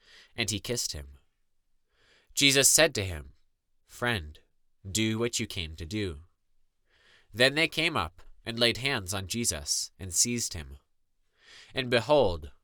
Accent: American